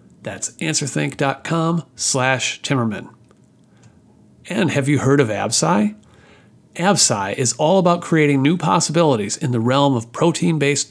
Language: English